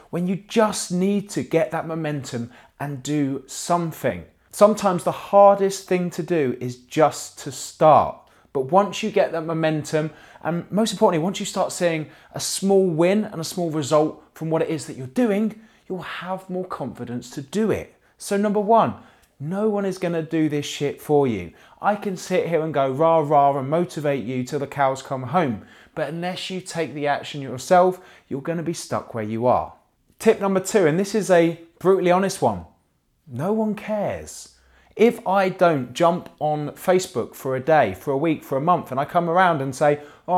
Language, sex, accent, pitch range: English, male, British, 145-190 Hz